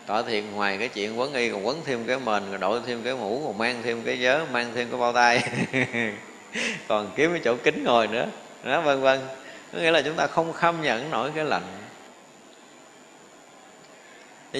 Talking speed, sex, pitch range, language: 200 wpm, male, 110-135 Hz, Vietnamese